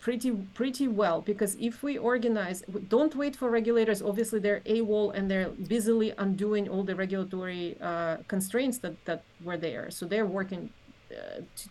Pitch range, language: 185-220 Hz, English